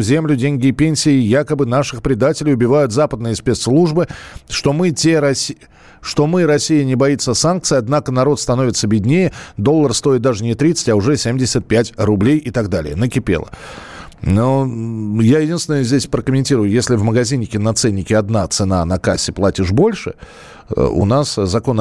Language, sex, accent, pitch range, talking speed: Russian, male, native, 110-155 Hz, 145 wpm